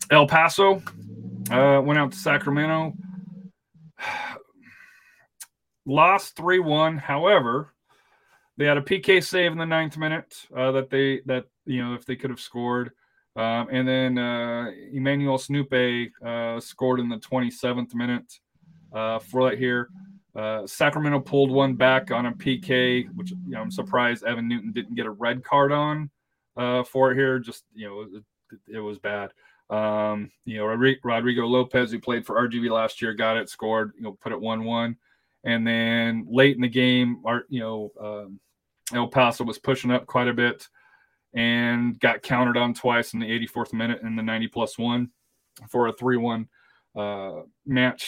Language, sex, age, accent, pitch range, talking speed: English, male, 30-49, American, 120-140 Hz, 170 wpm